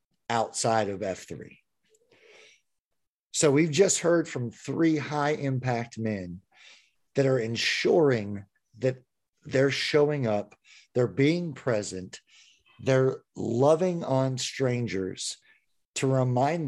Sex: male